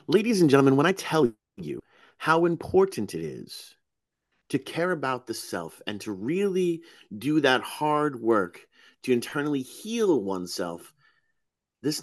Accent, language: American, English